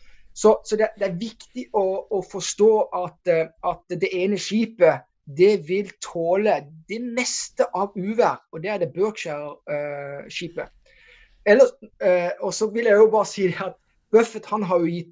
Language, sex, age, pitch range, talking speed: English, male, 20-39, 165-210 Hz, 170 wpm